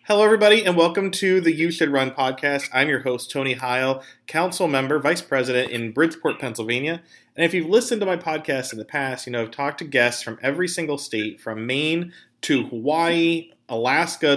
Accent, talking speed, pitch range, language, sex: American, 195 wpm, 130-195 Hz, English, male